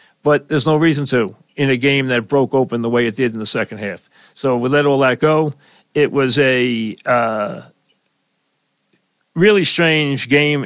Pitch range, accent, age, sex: 125-155 Hz, American, 40-59, male